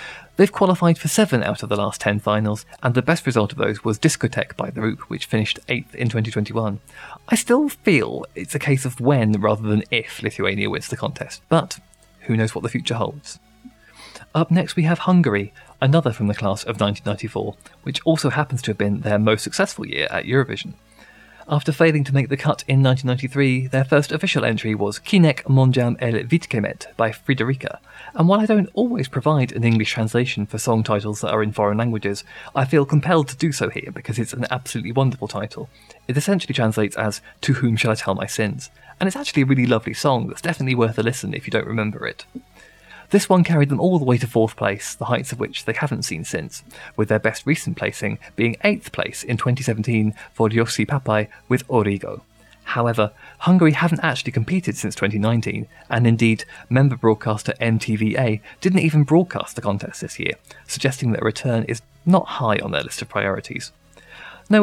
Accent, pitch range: British, 110-145 Hz